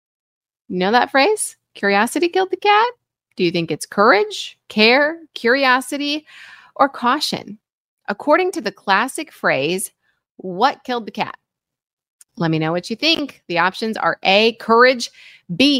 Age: 30-49